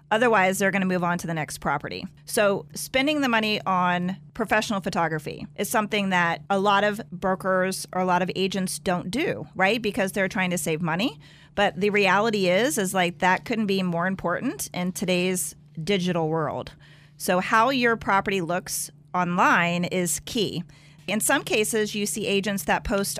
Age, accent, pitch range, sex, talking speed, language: 40-59, American, 175-210 Hz, female, 175 wpm, English